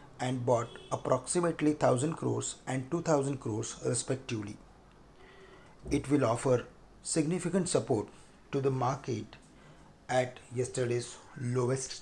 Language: English